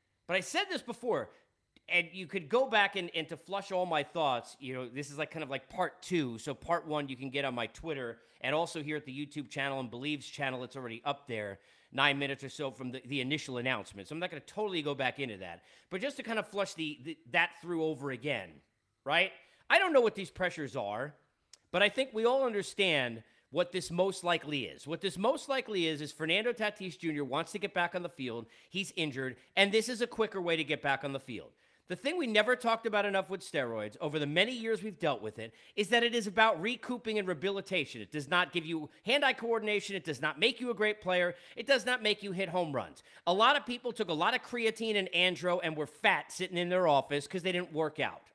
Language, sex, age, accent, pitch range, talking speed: English, male, 40-59, American, 145-210 Hz, 250 wpm